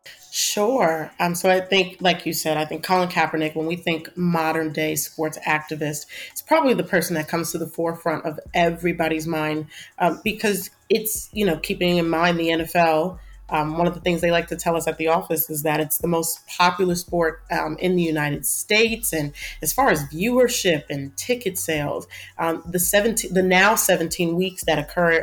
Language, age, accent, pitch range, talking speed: English, 30-49, American, 160-180 Hz, 195 wpm